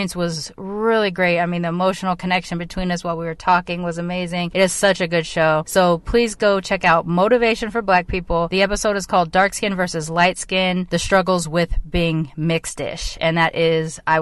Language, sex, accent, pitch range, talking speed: English, female, American, 160-195 Hz, 205 wpm